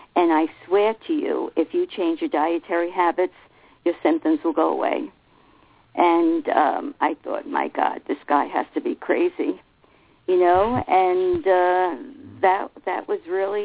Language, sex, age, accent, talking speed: English, female, 50-69, American, 160 wpm